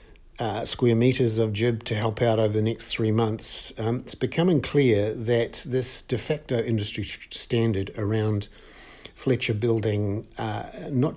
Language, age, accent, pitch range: English, 50-69, Australian, 105-125 Hz